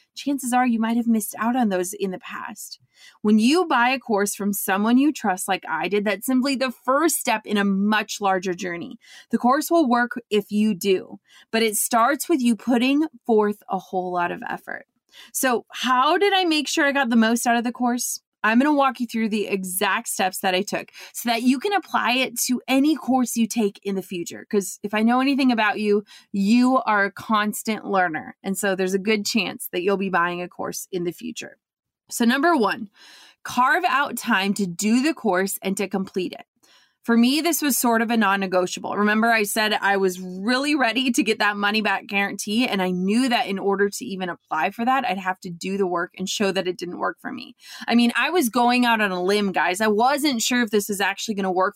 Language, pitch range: English, 195-250 Hz